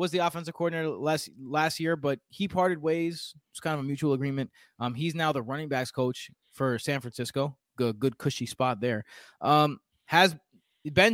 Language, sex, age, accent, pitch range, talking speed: English, male, 20-39, American, 135-175 Hz, 190 wpm